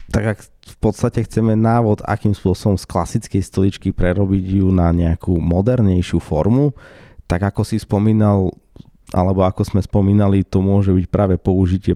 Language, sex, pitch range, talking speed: Slovak, male, 90-105 Hz, 150 wpm